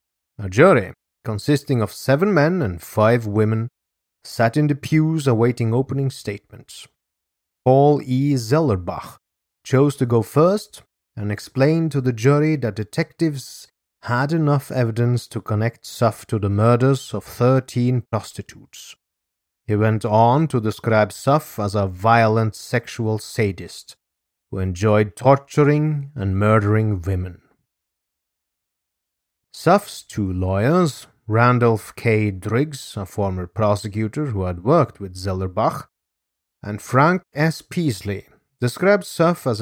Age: 30-49